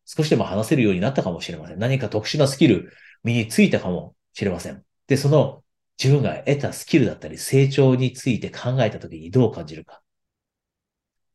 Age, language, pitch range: 40-59, Japanese, 100-140 Hz